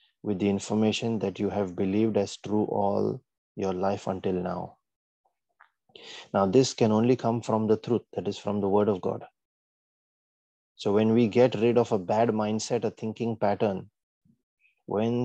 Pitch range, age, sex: 100-115 Hz, 30-49, male